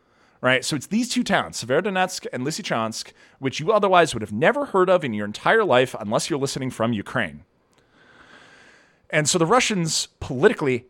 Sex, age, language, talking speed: male, 30-49, English, 170 wpm